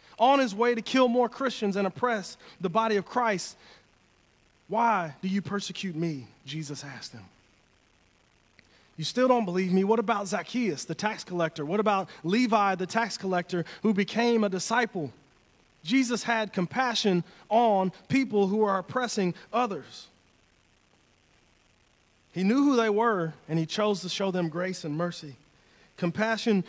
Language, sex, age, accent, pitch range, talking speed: English, male, 30-49, American, 165-220 Hz, 150 wpm